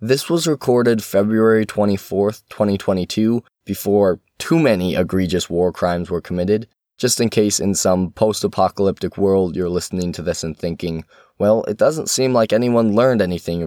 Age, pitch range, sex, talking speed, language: 20-39, 90-110 Hz, male, 155 wpm, English